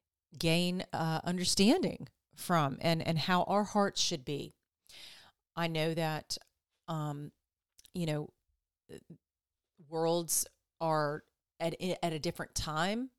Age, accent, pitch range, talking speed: 40-59, American, 120-180 Hz, 110 wpm